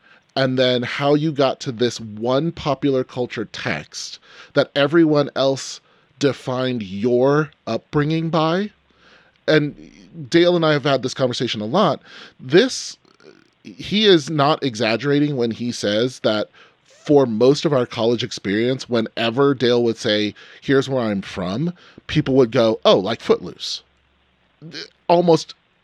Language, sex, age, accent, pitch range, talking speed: English, male, 30-49, American, 110-150 Hz, 135 wpm